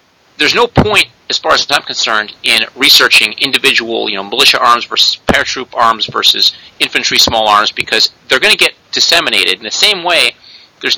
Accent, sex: American, male